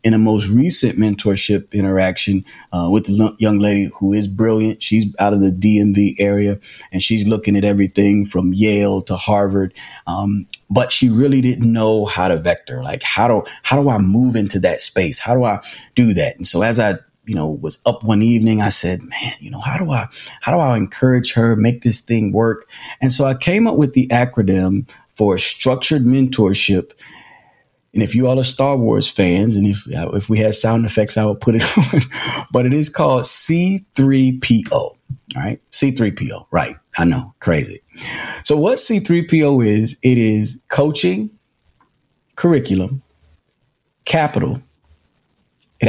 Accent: American